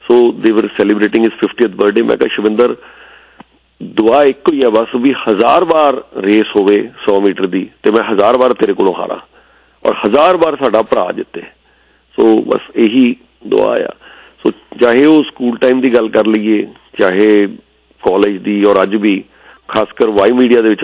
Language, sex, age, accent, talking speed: English, male, 40-59, Indian, 145 wpm